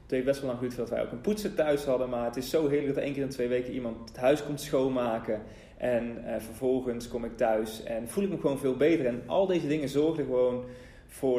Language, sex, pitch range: Dutch, male, 115-140 Hz